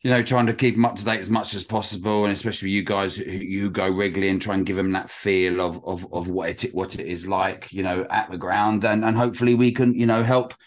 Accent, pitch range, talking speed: British, 90-105 Hz, 275 wpm